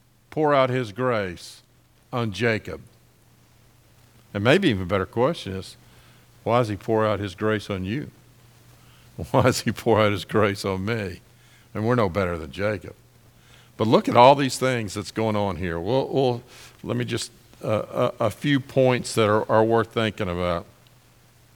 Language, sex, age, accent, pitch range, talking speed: English, male, 50-69, American, 110-135 Hz, 170 wpm